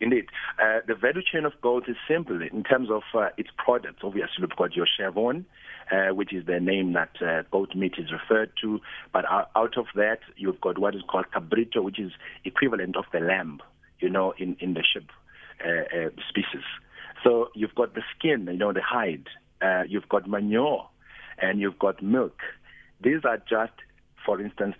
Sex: male